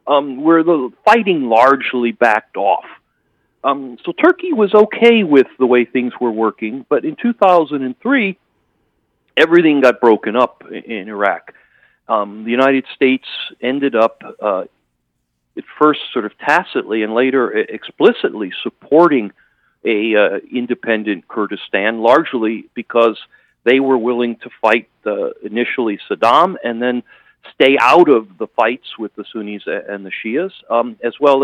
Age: 40-59